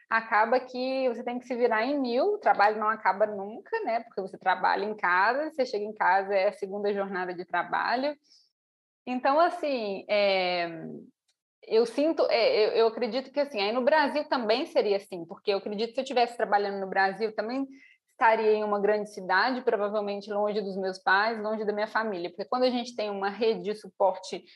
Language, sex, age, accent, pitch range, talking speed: Portuguese, female, 20-39, Brazilian, 205-270 Hz, 200 wpm